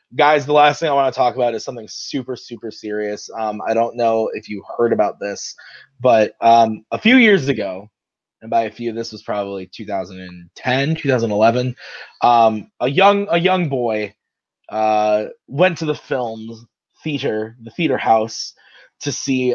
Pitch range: 115-160 Hz